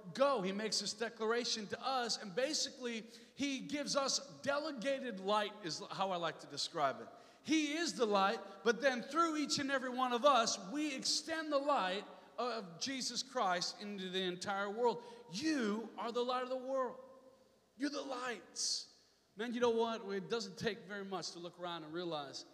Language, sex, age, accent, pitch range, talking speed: English, male, 40-59, American, 180-235 Hz, 185 wpm